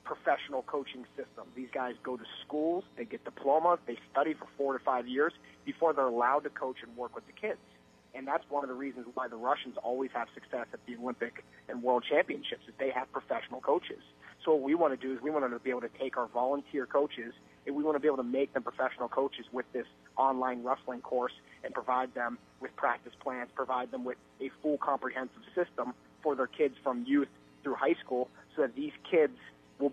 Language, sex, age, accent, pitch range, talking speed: English, male, 30-49, American, 125-140 Hz, 215 wpm